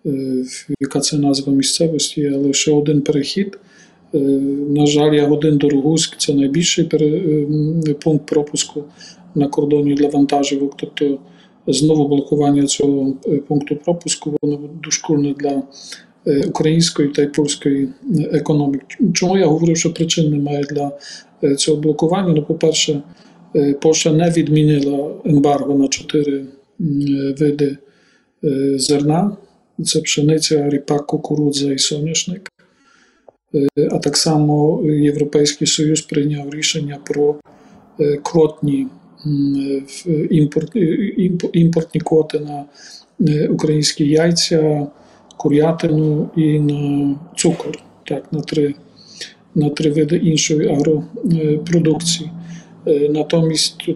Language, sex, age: Ukrainian, male, 50-69